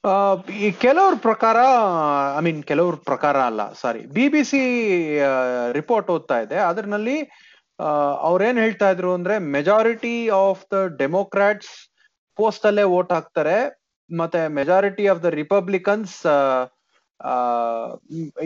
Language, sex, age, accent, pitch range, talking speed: Kannada, male, 30-49, native, 155-210 Hz, 110 wpm